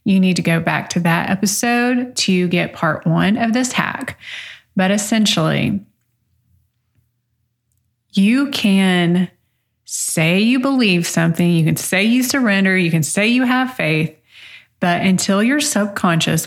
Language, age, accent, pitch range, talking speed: English, 20-39, American, 165-215 Hz, 140 wpm